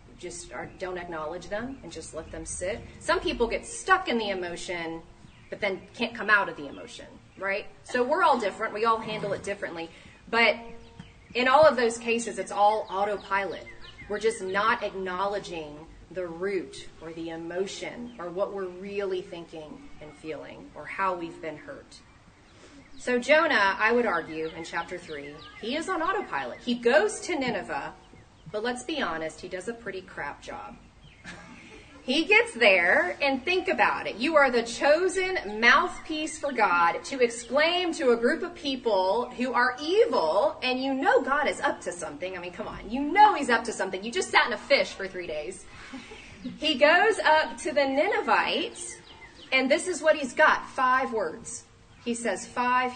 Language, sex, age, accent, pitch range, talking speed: English, female, 30-49, American, 185-280 Hz, 180 wpm